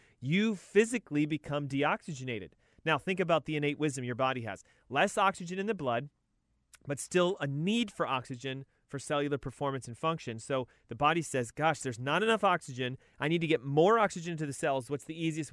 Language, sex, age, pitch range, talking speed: English, male, 30-49, 130-180 Hz, 195 wpm